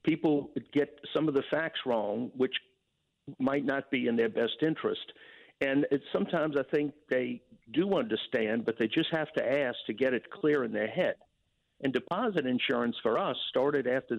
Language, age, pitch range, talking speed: English, 50-69, 125-155 Hz, 180 wpm